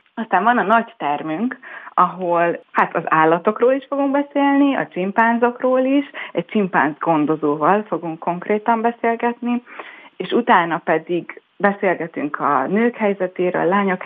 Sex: female